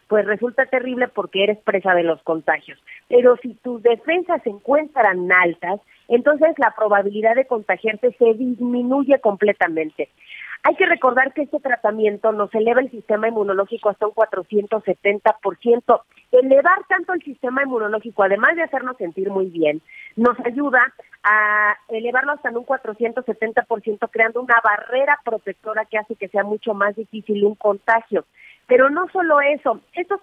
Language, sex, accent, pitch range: Spanish, female, Mexican, 200-250 Hz